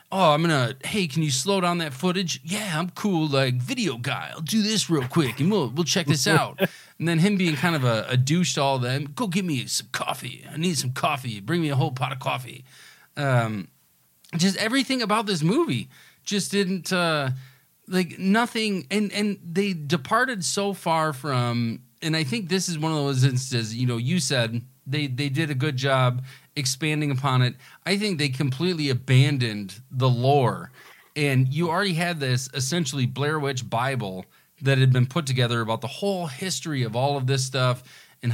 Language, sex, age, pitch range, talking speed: English, male, 30-49, 125-170 Hz, 200 wpm